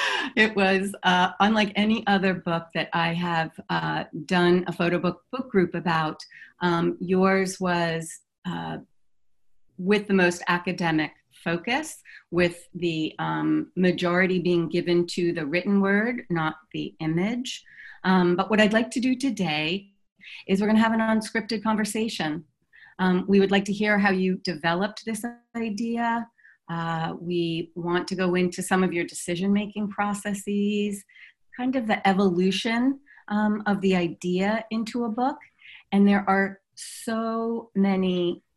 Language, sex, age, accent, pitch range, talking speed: English, female, 40-59, American, 175-210 Hz, 145 wpm